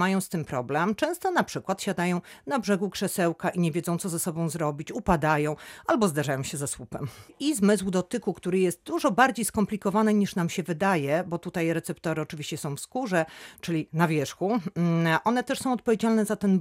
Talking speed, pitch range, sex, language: 190 wpm, 155-205 Hz, female, Polish